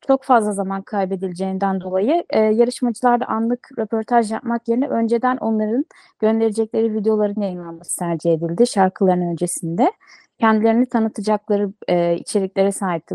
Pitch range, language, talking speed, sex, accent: 200-260 Hz, Turkish, 120 wpm, female, native